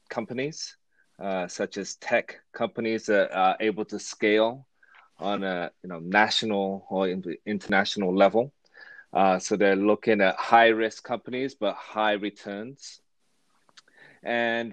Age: 30-49